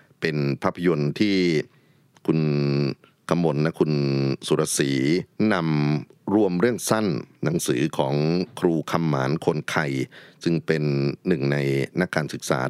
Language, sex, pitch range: Thai, male, 70-85 Hz